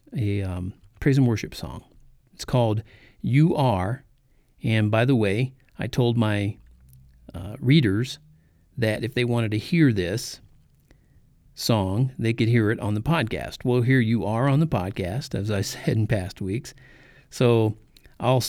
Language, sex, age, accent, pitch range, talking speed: English, male, 50-69, American, 105-140 Hz, 160 wpm